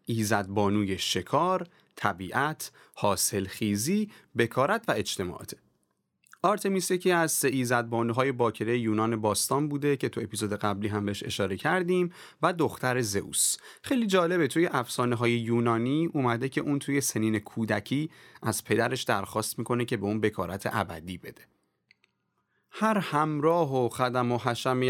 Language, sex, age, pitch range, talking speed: Persian, male, 30-49, 105-150 Hz, 135 wpm